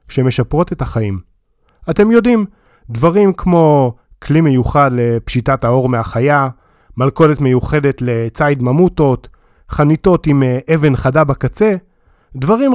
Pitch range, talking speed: 125-185 Hz, 105 wpm